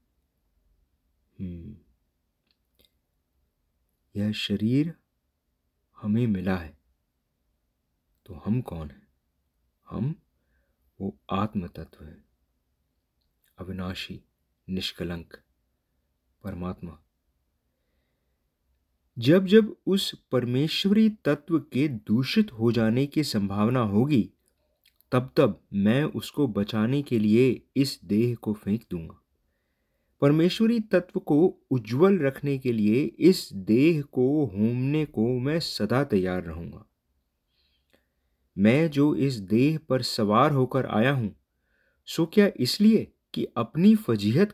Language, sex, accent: English, male, Indian